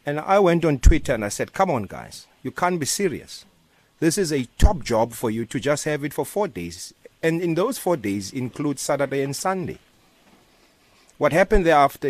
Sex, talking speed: male, 205 wpm